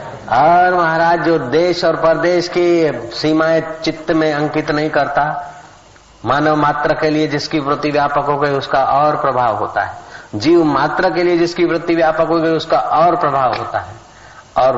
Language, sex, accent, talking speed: Hindi, male, native, 170 wpm